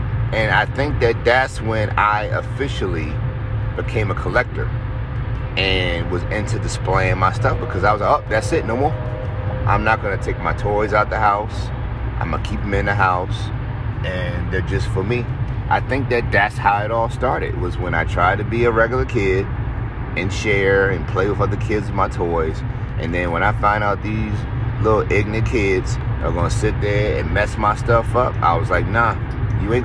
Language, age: English, 30-49